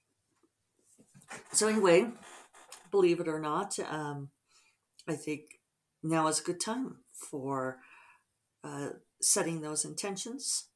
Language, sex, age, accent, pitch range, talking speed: English, female, 50-69, American, 155-190 Hz, 105 wpm